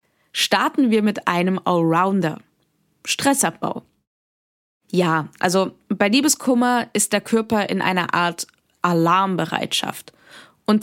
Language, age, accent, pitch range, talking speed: German, 20-39, German, 180-235 Hz, 100 wpm